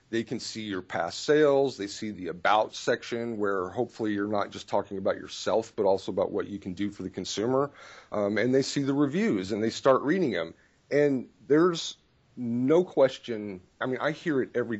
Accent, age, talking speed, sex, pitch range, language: American, 40-59, 205 wpm, male, 100-135 Hz, English